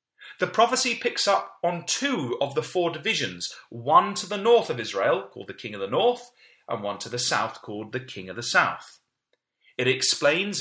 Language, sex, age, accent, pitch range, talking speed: English, male, 30-49, British, 120-195 Hz, 200 wpm